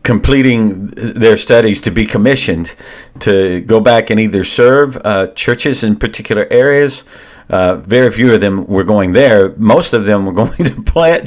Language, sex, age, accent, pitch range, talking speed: English, male, 50-69, American, 95-115 Hz, 170 wpm